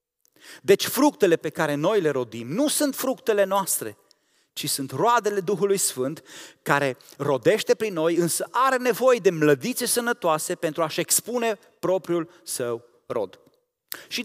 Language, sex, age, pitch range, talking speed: Romanian, male, 30-49, 155-240 Hz, 140 wpm